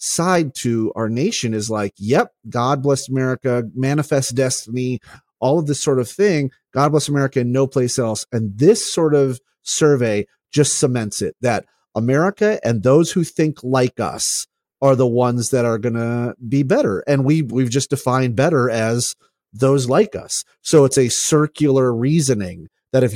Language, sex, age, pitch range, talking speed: English, male, 30-49, 120-155 Hz, 170 wpm